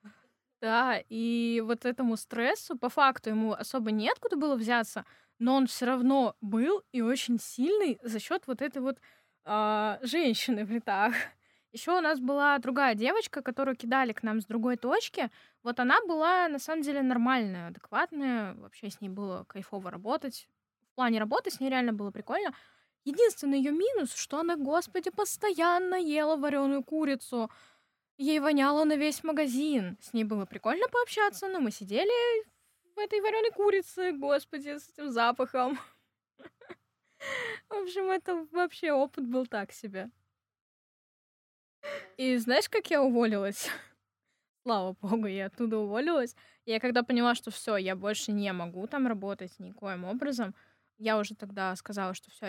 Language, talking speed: Russian, 150 wpm